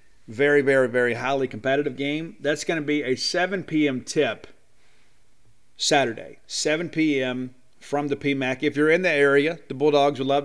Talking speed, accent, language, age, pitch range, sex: 165 wpm, American, English, 40-59, 120-145 Hz, male